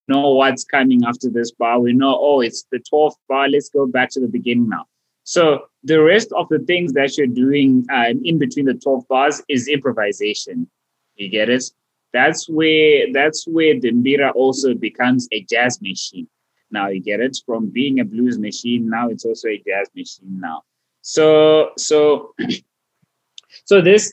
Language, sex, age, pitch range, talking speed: English, male, 20-39, 115-155 Hz, 175 wpm